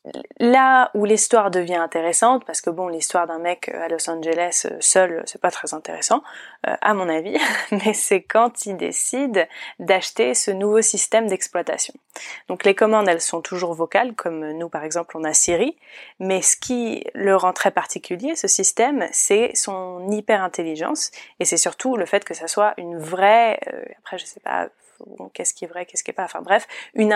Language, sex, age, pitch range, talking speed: French, female, 20-39, 170-230 Hz, 190 wpm